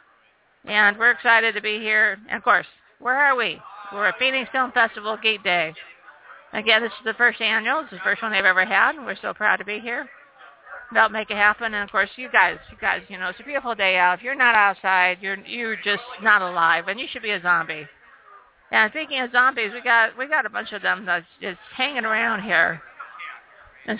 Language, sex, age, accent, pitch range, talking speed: English, female, 50-69, American, 190-240 Hz, 225 wpm